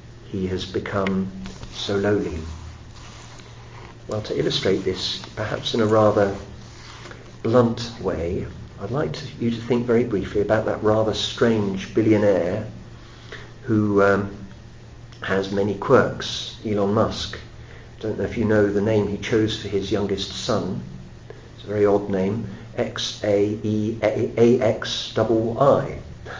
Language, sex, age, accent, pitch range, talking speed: English, male, 50-69, British, 100-120 Hz, 125 wpm